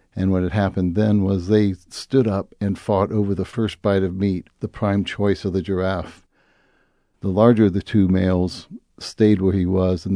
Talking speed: 200 wpm